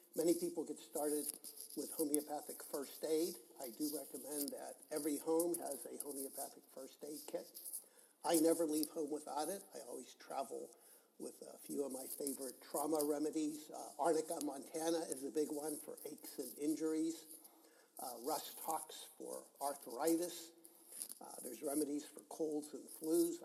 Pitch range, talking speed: 145-160 Hz, 150 wpm